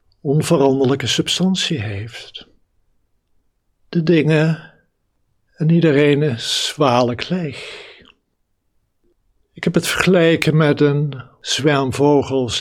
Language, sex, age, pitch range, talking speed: Dutch, male, 60-79, 120-155 Hz, 80 wpm